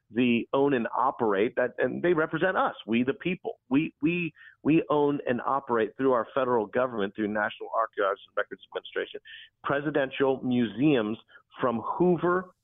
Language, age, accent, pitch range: English, 40-59, American, 110-150 Hz